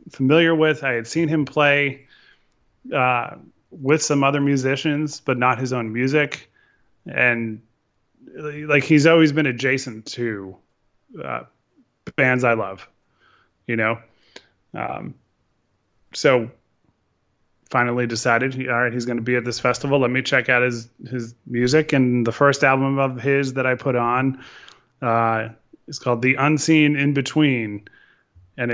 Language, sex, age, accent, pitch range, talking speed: English, male, 20-39, American, 120-145 Hz, 145 wpm